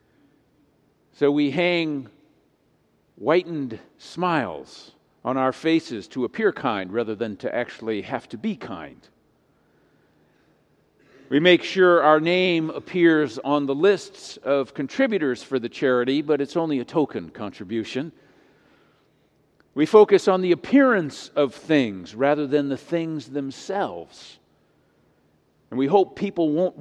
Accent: American